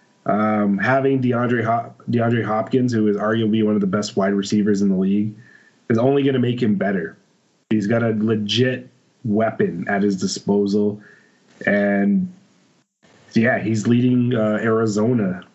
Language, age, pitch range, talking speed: English, 30-49, 105-125 Hz, 150 wpm